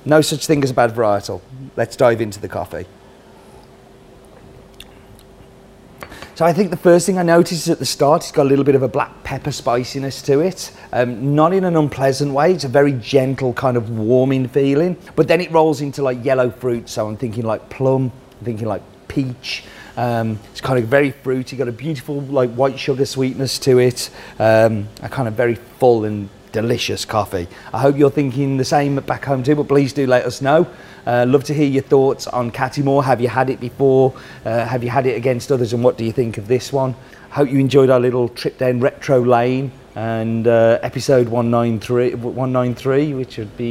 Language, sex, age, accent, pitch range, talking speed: English, male, 40-59, British, 120-140 Hz, 205 wpm